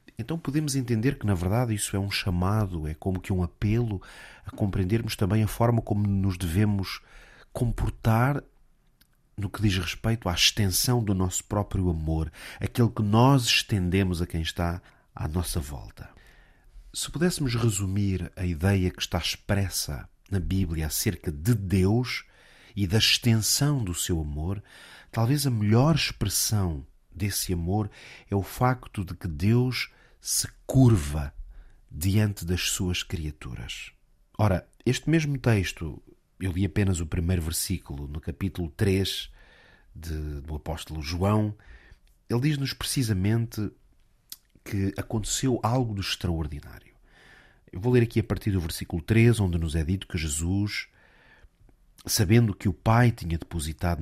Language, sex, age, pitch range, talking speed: Portuguese, male, 40-59, 90-115 Hz, 140 wpm